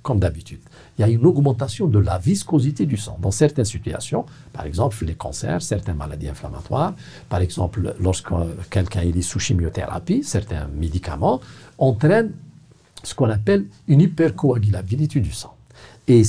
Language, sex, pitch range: French, male, 95-140 Hz